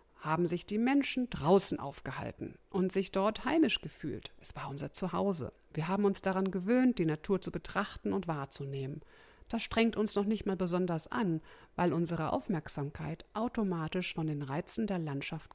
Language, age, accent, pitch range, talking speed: German, 50-69, German, 165-215 Hz, 165 wpm